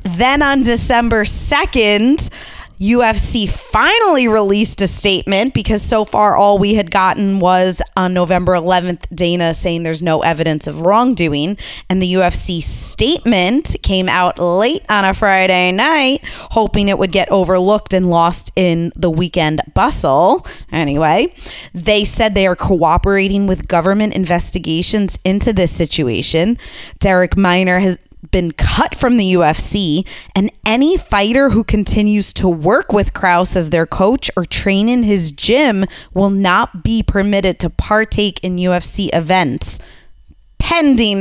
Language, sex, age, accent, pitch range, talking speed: English, female, 20-39, American, 175-210 Hz, 140 wpm